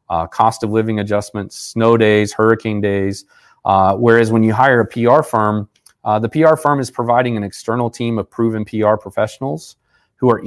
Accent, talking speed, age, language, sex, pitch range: American, 185 wpm, 30-49, English, male, 95-120 Hz